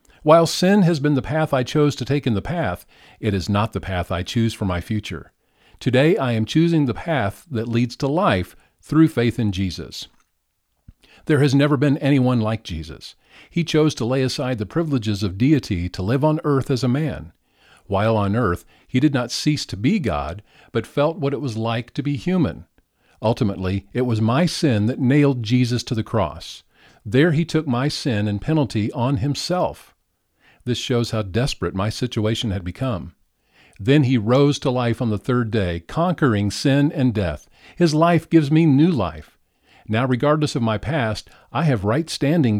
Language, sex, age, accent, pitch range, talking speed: English, male, 50-69, American, 105-145 Hz, 190 wpm